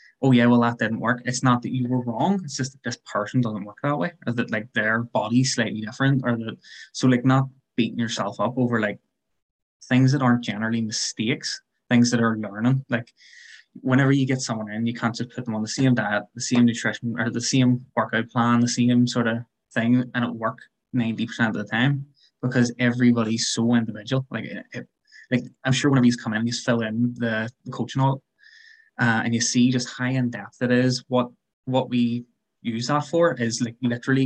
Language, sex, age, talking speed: English, male, 20-39, 215 wpm